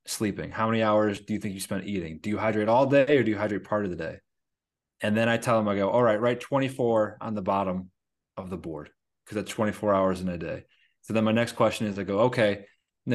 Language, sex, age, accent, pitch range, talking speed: English, male, 30-49, American, 105-135 Hz, 260 wpm